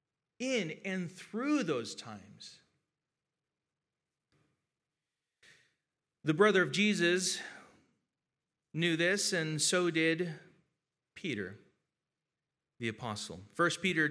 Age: 40-59